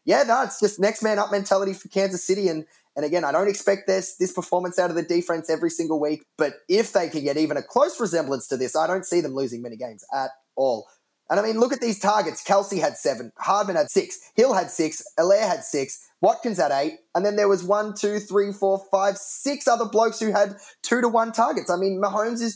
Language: English